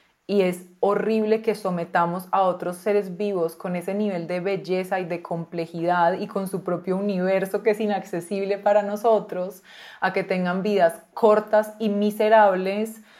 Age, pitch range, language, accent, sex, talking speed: 20-39, 180-210 Hz, Spanish, Colombian, female, 155 wpm